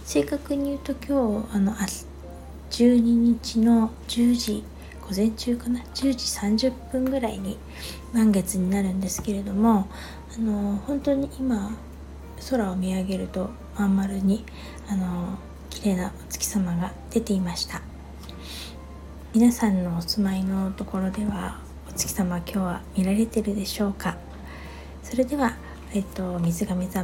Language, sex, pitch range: Japanese, female, 190-235 Hz